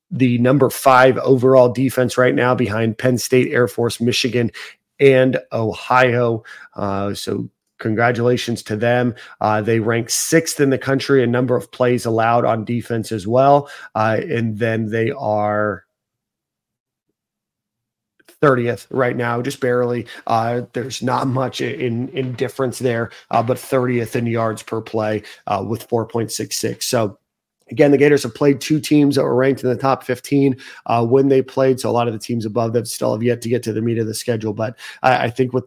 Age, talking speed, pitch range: 40-59, 180 wpm, 115-130 Hz